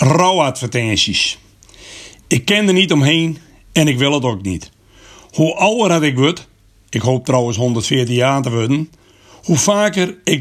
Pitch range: 110-150 Hz